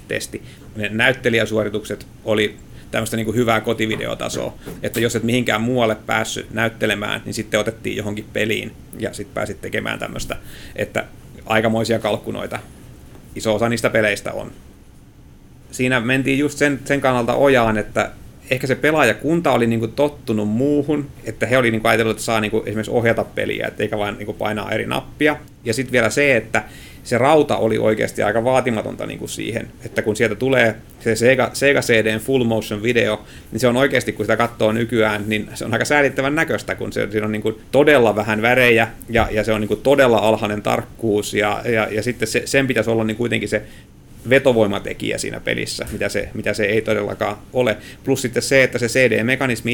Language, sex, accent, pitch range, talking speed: Finnish, male, native, 110-125 Hz, 175 wpm